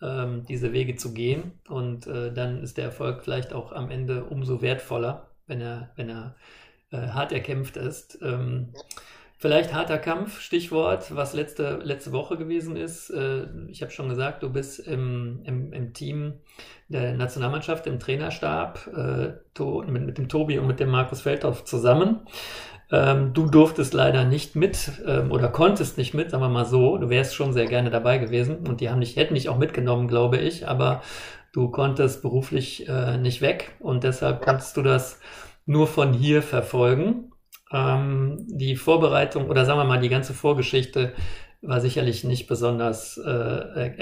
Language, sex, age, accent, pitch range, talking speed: German, male, 40-59, German, 120-140 Hz, 165 wpm